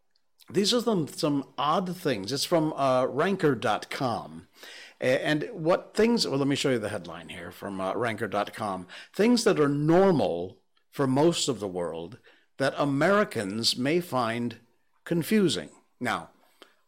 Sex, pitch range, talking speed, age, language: male, 90-140 Hz, 140 wpm, 60-79, English